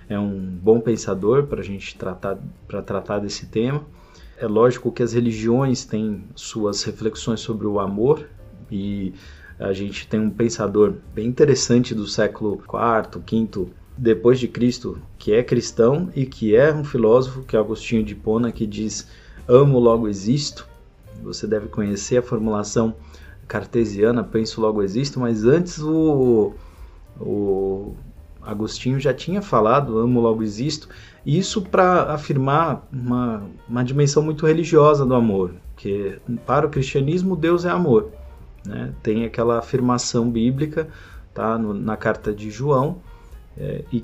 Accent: Brazilian